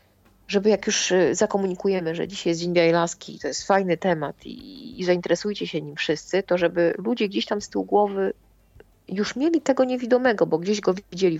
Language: Polish